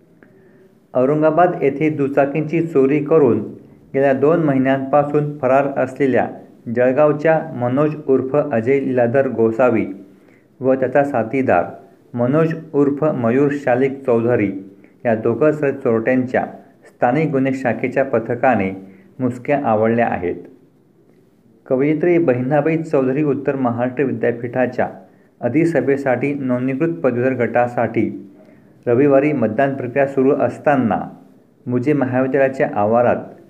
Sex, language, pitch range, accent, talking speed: male, Marathi, 125-145 Hz, native, 95 wpm